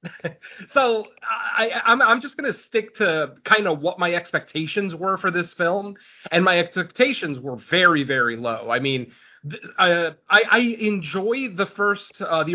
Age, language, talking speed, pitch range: 30-49, English, 175 wpm, 140-180 Hz